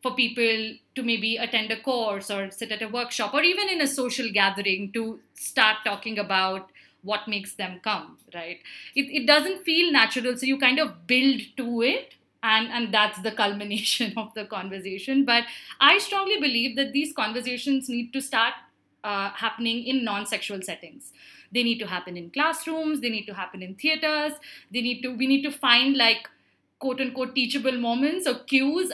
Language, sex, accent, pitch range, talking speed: English, female, Indian, 205-260 Hz, 180 wpm